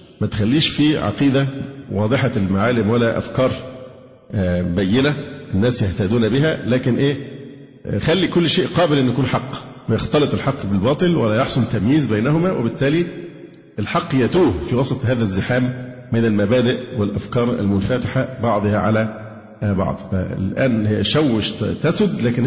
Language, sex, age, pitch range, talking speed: Arabic, male, 50-69, 110-145 Hz, 125 wpm